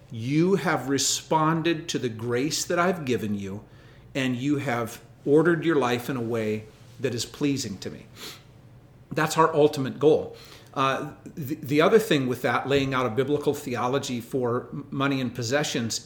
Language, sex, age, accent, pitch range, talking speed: English, male, 50-69, American, 120-150 Hz, 165 wpm